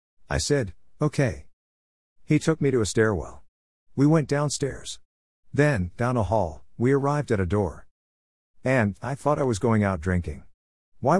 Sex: male